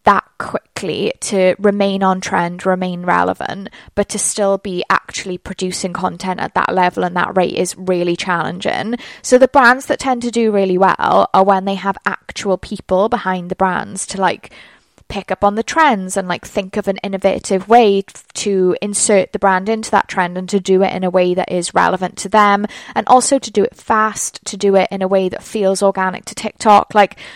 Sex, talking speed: female, 205 wpm